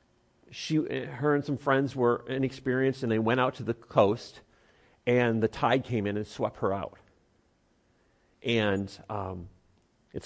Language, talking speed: English, 150 wpm